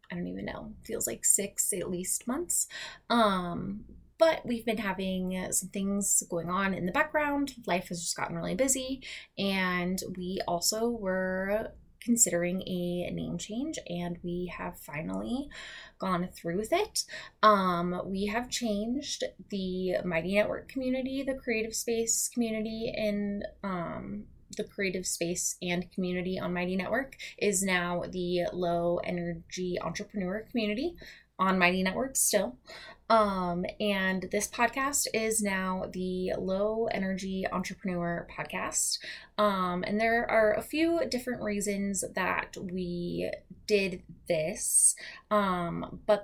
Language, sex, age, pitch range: English, female, 20-39, 180-225 Hz